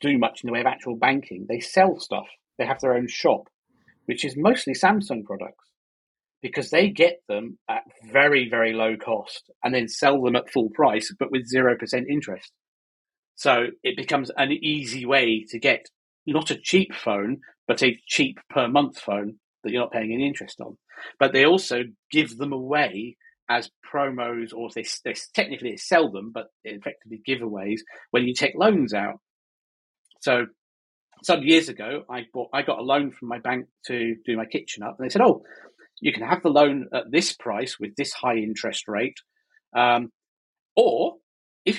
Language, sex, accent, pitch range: English, male, British, 120-165 Hz